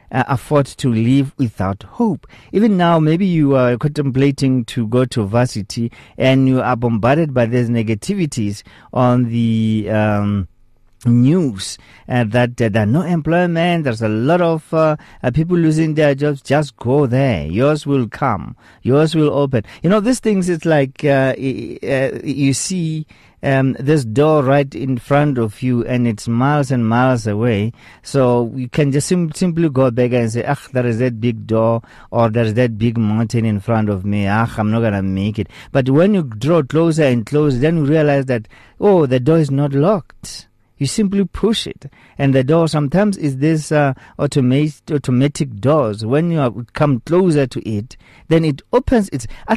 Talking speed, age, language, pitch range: 180 wpm, 50-69, English, 115-160 Hz